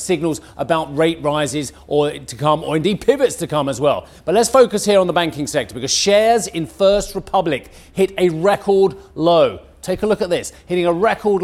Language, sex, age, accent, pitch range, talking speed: English, male, 40-59, British, 150-210 Hz, 205 wpm